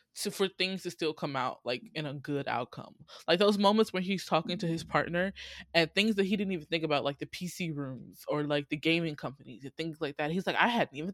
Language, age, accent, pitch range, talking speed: English, 20-39, American, 150-200 Hz, 255 wpm